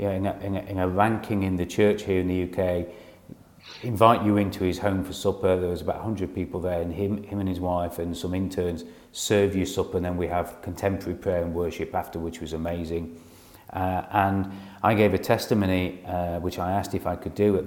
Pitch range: 90-105 Hz